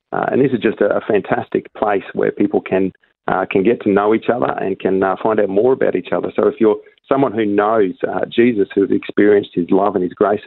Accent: Australian